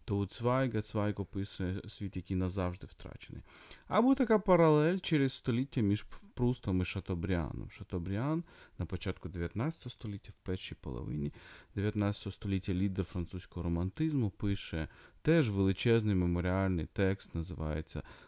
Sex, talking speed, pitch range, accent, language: male, 120 wpm, 95-130 Hz, native, Ukrainian